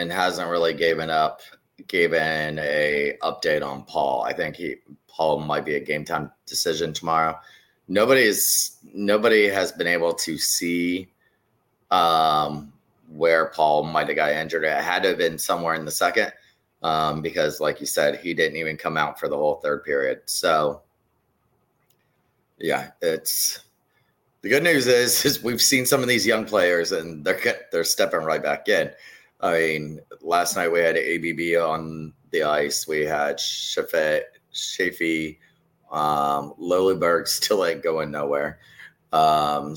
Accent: American